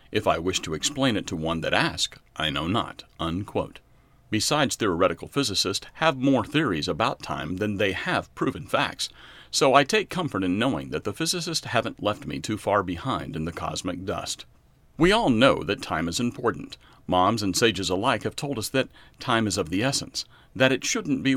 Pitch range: 100-140 Hz